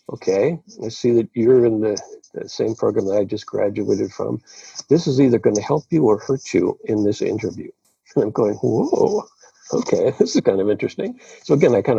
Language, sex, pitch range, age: English, male, 105-125 Hz, 50-69